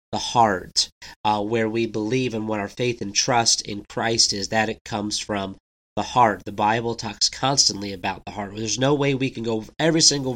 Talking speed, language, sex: 210 wpm, English, male